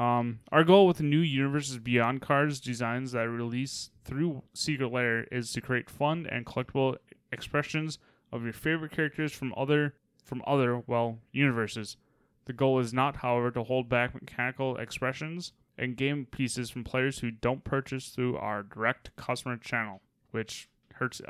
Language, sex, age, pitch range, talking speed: English, male, 20-39, 115-135 Hz, 160 wpm